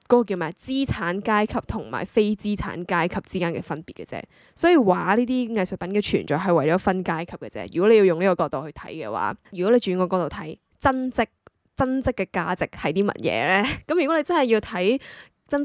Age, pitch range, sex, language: 10-29, 175-230 Hz, female, Chinese